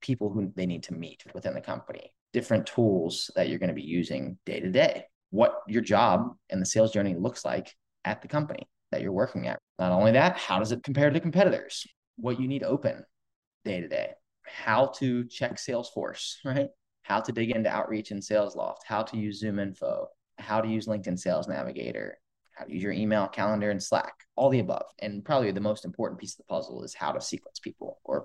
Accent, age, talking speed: American, 20-39, 210 wpm